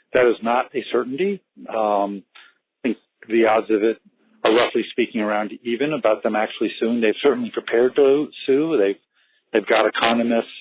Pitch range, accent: 105-130 Hz, American